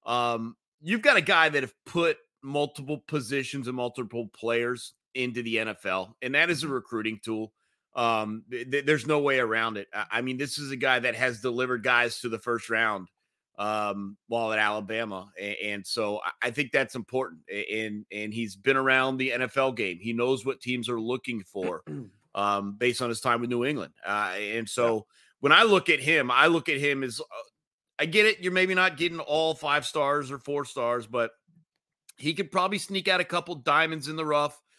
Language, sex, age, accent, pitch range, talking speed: English, male, 30-49, American, 115-155 Hz, 205 wpm